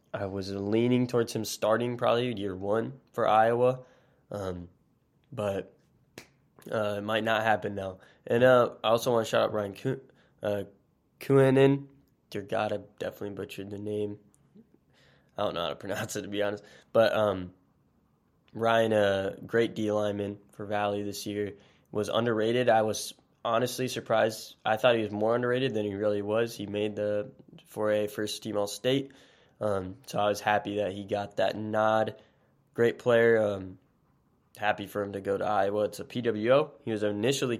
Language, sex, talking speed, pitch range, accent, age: English, male, 170 wpm, 100-115 Hz, American, 20-39